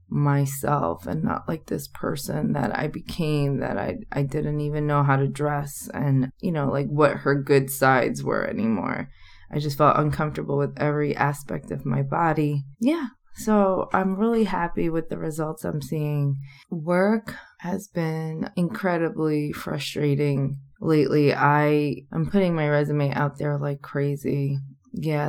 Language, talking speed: English, 150 wpm